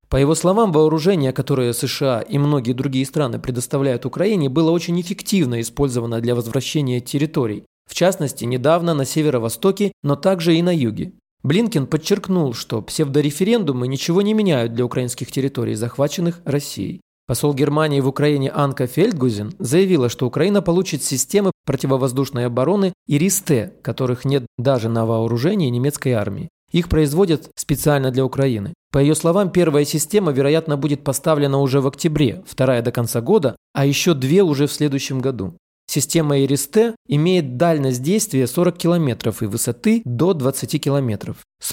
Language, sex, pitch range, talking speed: Russian, male, 130-165 Hz, 150 wpm